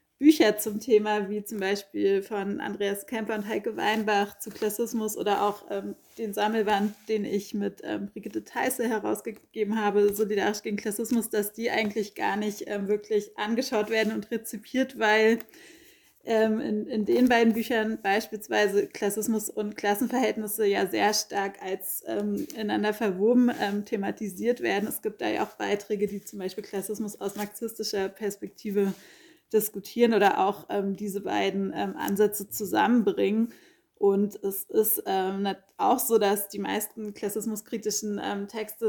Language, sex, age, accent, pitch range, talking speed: German, female, 30-49, German, 200-220 Hz, 150 wpm